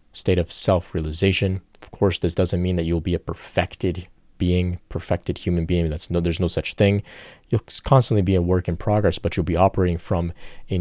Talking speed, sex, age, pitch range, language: 200 wpm, male, 30-49, 85-100 Hz, English